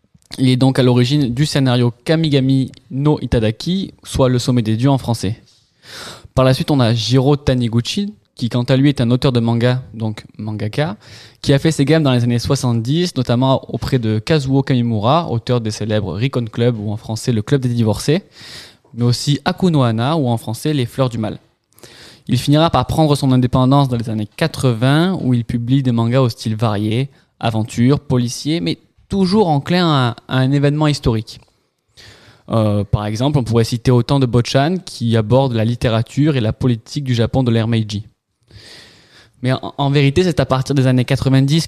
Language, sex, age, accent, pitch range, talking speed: French, male, 20-39, French, 115-140 Hz, 185 wpm